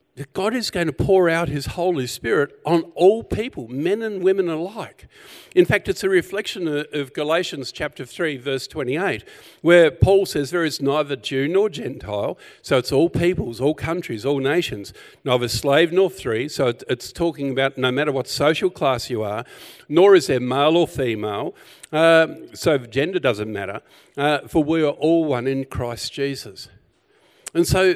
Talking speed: 175 wpm